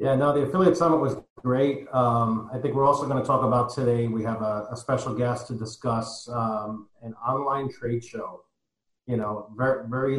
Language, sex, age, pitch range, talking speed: English, male, 40-59, 115-130 Hz, 200 wpm